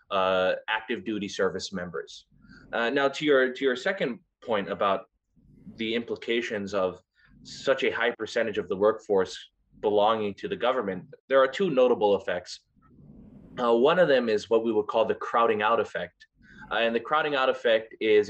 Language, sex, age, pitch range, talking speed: English, male, 20-39, 105-160 Hz, 175 wpm